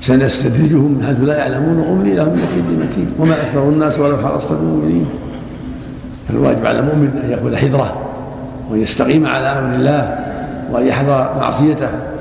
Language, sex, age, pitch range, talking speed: Arabic, male, 60-79, 125-150 Hz, 135 wpm